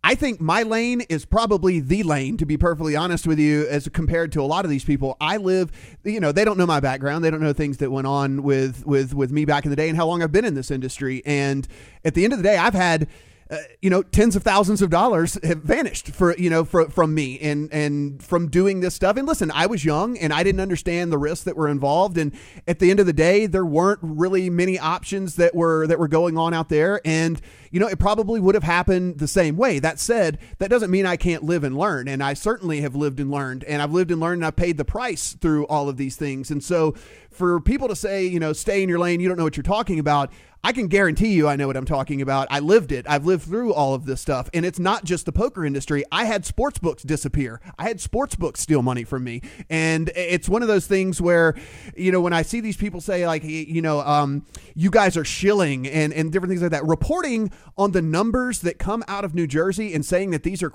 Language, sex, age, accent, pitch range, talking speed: English, male, 30-49, American, 150-190 Hz, 260 wpm